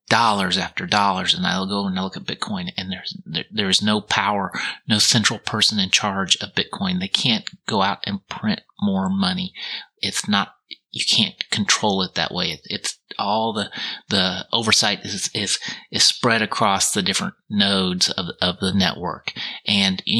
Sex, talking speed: male, 170 wpm